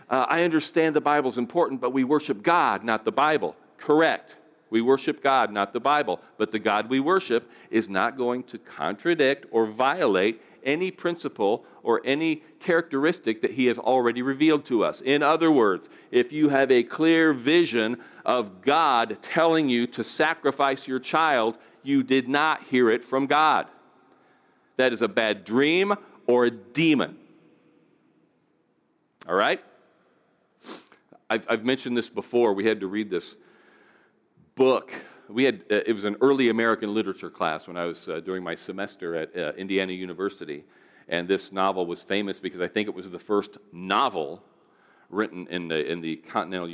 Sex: male